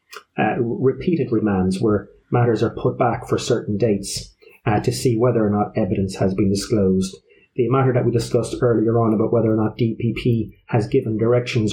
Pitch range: 110-140 Hz